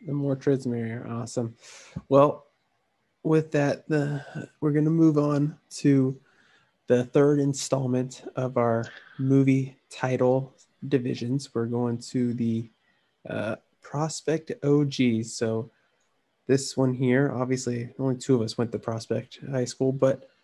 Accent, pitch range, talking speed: American, 120-145 Hz, 130 wpm